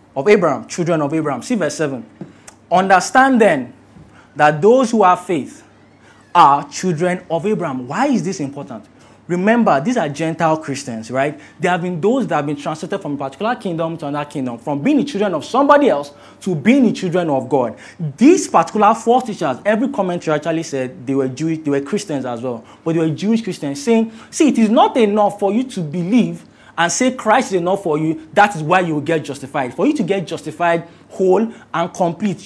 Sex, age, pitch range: male, 20-39, 150-205 Hz